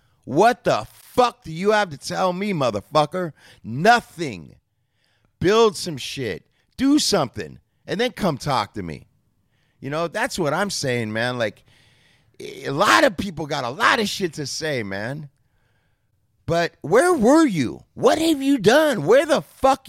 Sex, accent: male, American